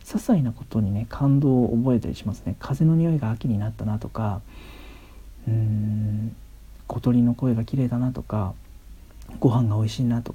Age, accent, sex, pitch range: 40-59, native, male, 105-130 Hz